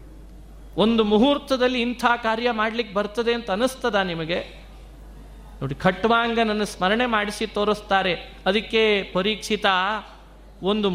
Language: Kannada